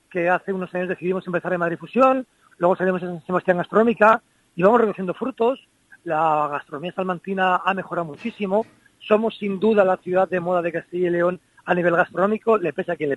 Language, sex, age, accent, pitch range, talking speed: Spanish, male, 40-59, Spanish, 160-205 Hz, 200 wpm